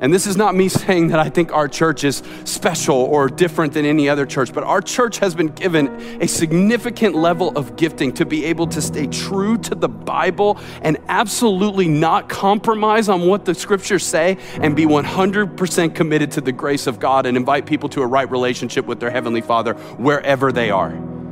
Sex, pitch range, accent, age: male, 120-175 Hz, American, 40-59